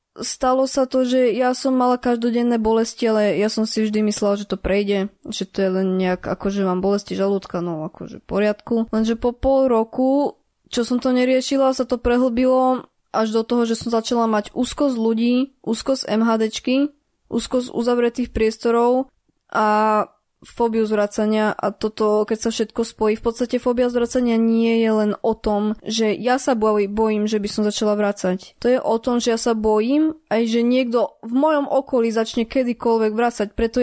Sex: female